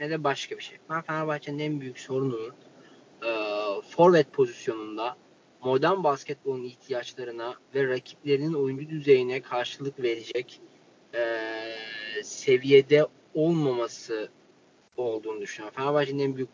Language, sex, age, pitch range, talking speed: Turkish, male, 30-49, 130-160 Hz, 100 wpm